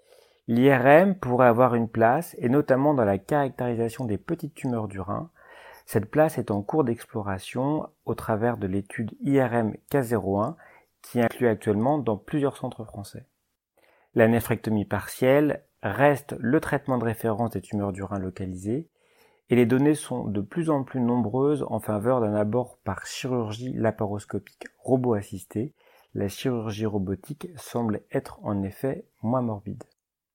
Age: 40-59